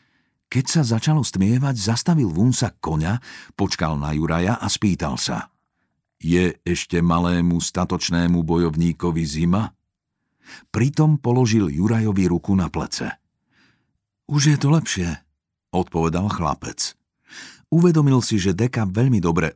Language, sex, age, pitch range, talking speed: Slovak, male, 50-69, 90-120 Hz, 115 wpm